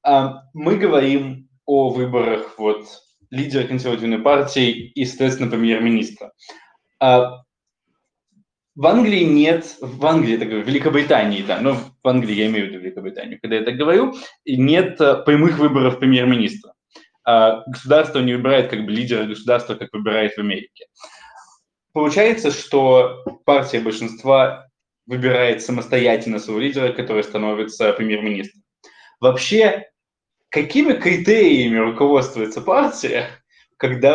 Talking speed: 105 wpm